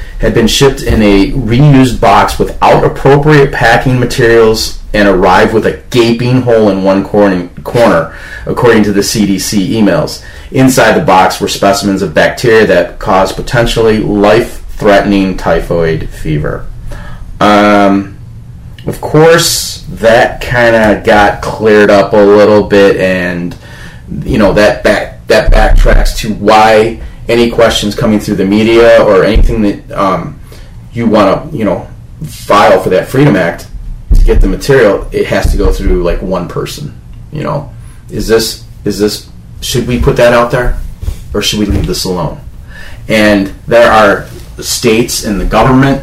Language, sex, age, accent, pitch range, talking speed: English, male, 30-49, American, 100-120 Hz, 155 wpm